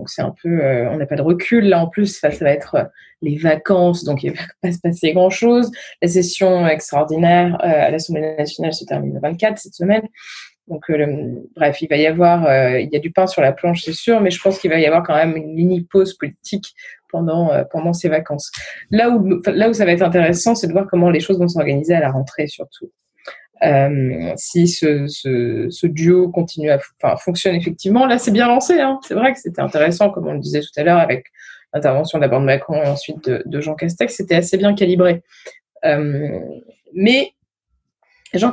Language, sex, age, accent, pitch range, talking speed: French, female, 20-39, French, 155-205 Hz, 220 wpm